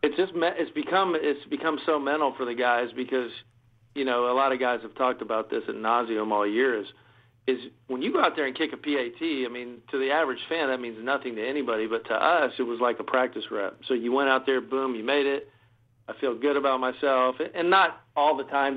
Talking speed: 245 wpm